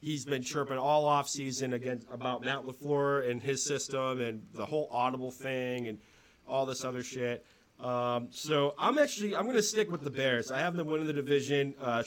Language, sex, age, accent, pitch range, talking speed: English, male, 30-49, American, 130-155 Hz, 195 wpm